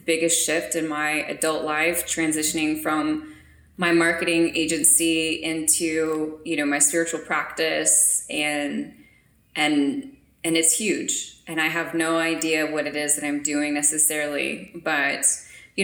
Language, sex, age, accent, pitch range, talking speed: English, female, 20-39, American, 150-170 Hz, 135 wpm